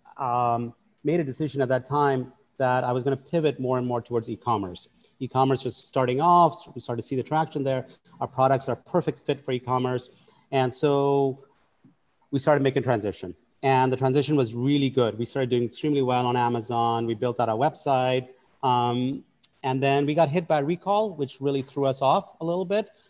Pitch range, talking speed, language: 120-140 Hz, 205 wpm, English